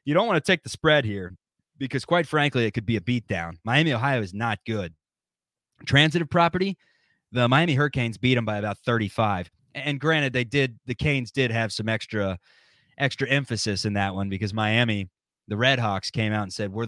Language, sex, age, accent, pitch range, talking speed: English, male, 20-39, American, 110-145 Hz, 195 wpm